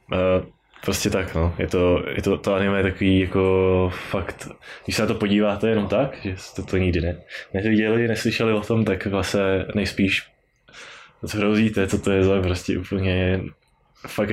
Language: Czech